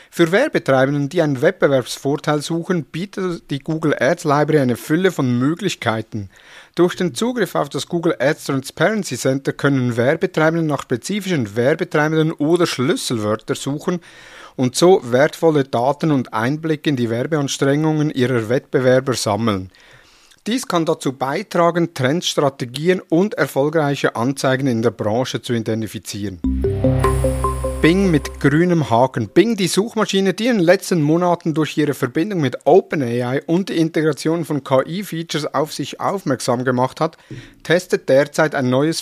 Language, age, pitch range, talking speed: German, 50-69, 130-170 Hz, 135 wpm